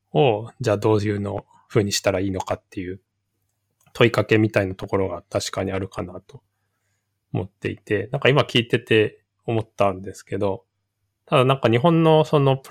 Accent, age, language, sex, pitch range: native, 20-39, Japanese, male, 100-120 Hz